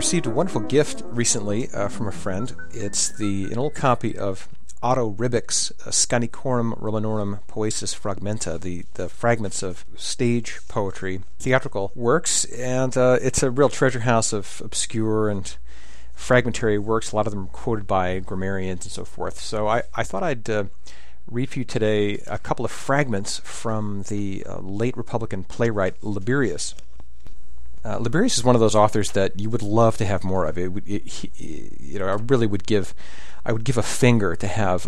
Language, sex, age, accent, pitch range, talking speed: English, male, 40-59, American, 95-120 Hz, 180 wpm